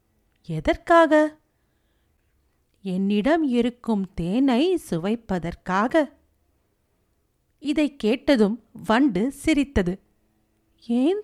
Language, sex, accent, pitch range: Tamil, female, native, 195-300 Hz